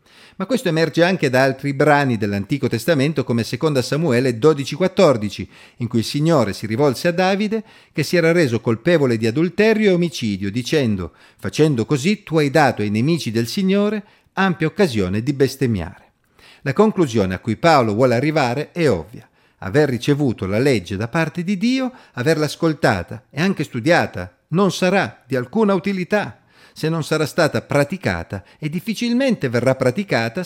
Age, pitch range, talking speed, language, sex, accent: 40-59, 115-185 Hz, 160 wpm, Italian, male, native